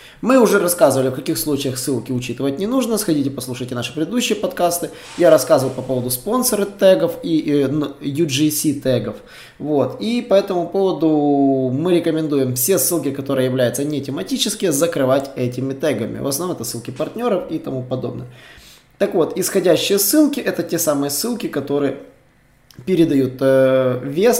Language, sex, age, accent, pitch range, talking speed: Russian, male, 20-39, native, 135-190 Hz, 145 wpm